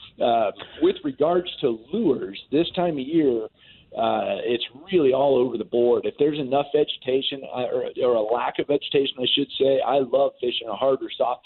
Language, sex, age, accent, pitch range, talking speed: English, male, 40-59, American, 120-145 Hz, 190 wpm